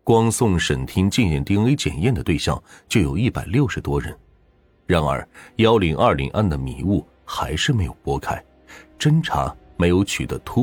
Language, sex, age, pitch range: Chinese, male, 30-49, 75-105 Hz